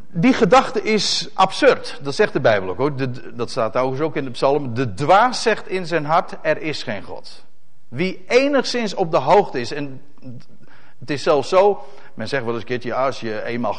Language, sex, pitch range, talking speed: Dutch, male, 135-200 Hz, 215 wpm